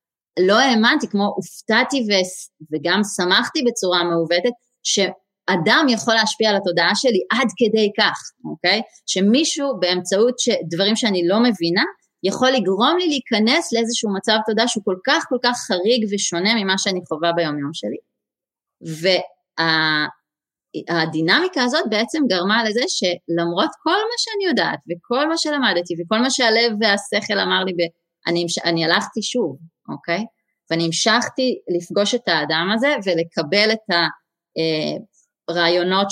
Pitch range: 170-225 Hz